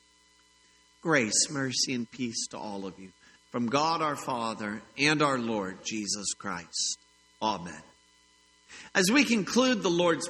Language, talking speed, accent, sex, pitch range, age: English, 135 wpm, American, male, 110-160 Hz, 50-69